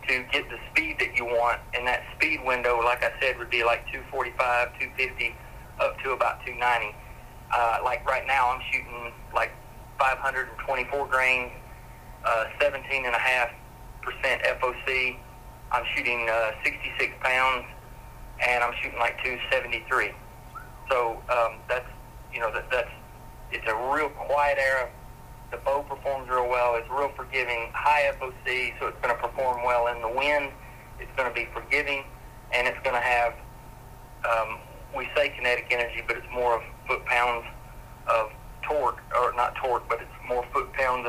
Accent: American